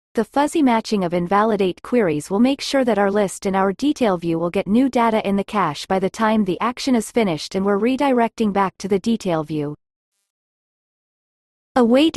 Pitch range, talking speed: 190-245 Hz, 190 wpm